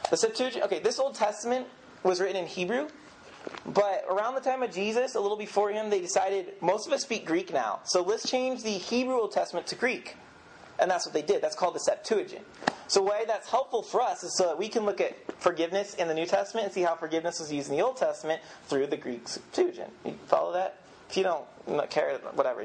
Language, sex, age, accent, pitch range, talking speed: English, male, 30-49, American, 190-255 Hz, 230 wpm